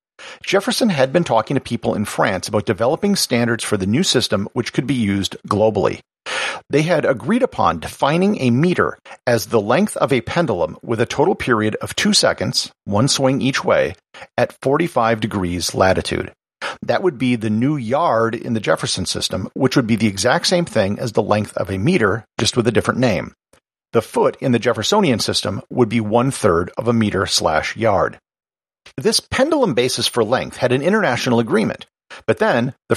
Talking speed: 185 wpm